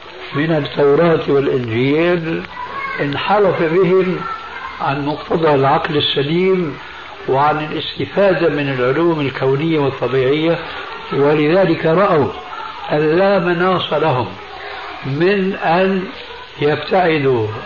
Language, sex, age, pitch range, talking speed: Arabic, male, 60-79, 145-190 Hz, 80 wpm